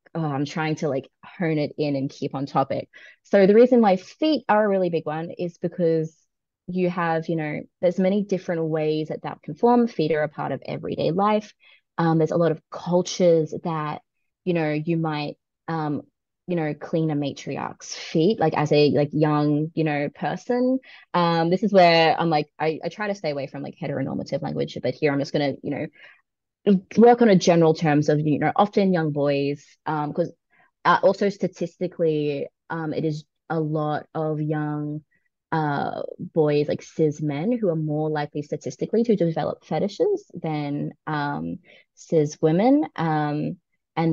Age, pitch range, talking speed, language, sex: 20-39, 150-180 Hz, 180 wpm, English, female